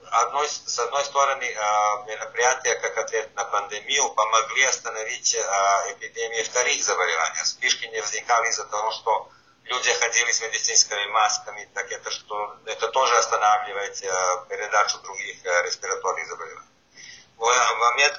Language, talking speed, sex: Russian, 120 wpm, male